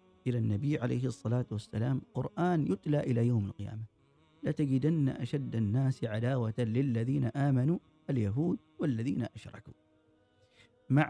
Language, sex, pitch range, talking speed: Arabic, male, 115-160 Hz, 110 wpm